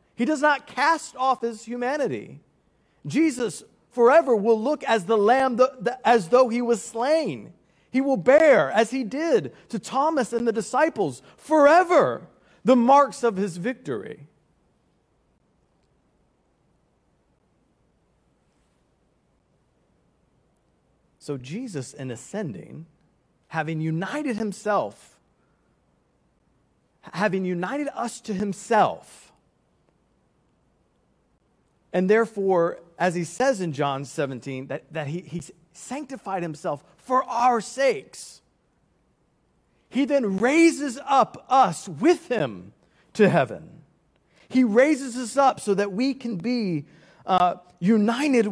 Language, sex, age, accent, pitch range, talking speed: English, male, 40-59, American, 180-260 Hz, 105 wpm